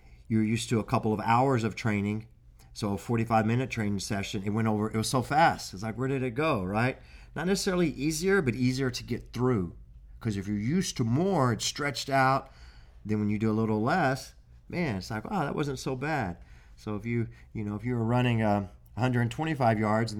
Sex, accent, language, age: male, American, English, 40-59